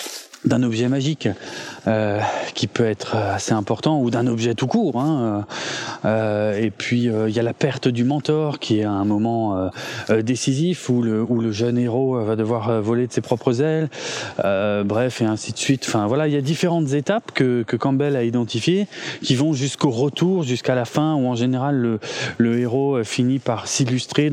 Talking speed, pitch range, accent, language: 195 wpm, 110-135 Hz, French, French